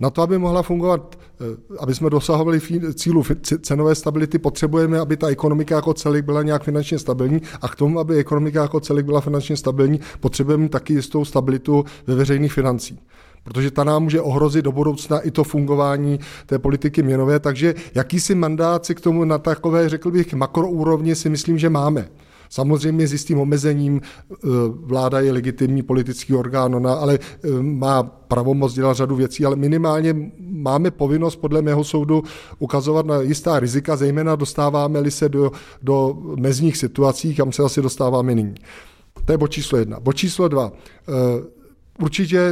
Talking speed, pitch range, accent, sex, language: 160 wpm, 135-155 Hz, native, male, Czech